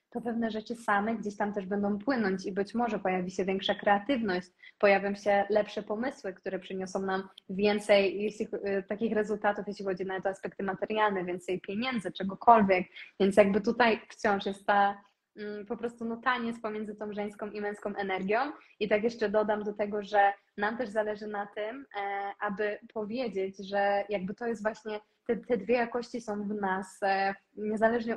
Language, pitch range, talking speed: Polish, 195-220 Hz, 170 wpm